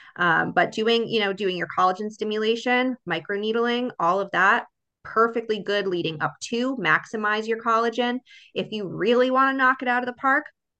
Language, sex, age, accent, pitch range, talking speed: English, female, 20-39, American, 180-230 Hz, 180 wpm